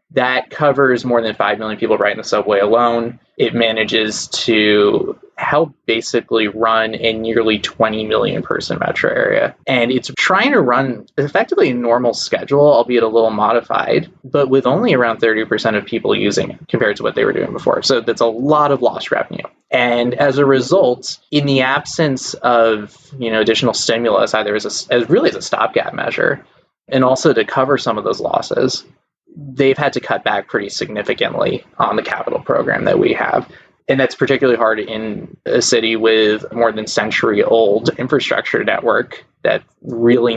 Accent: American